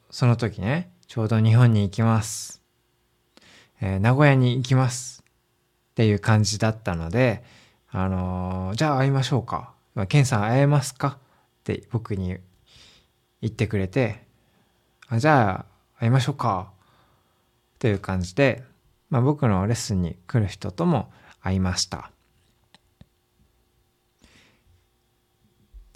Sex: male